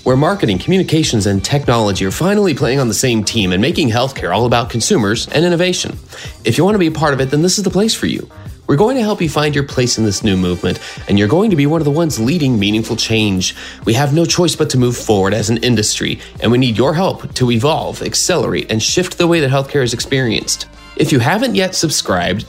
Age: 30-49